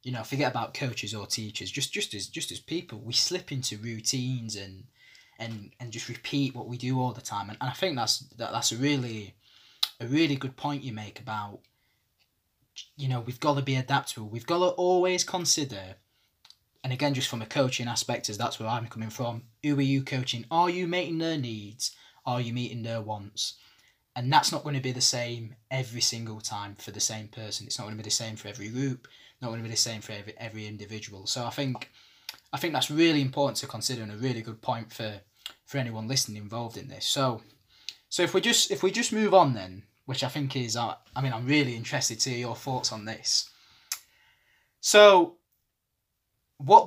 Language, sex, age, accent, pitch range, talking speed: English, male, 20-39, British, 110-140 Hz, 215 wpm